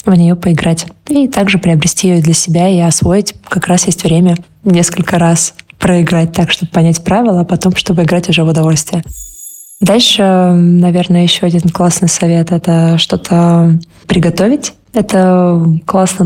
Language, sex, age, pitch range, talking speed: Russian, female, 20-39, 170-185 Hz, 150 wpm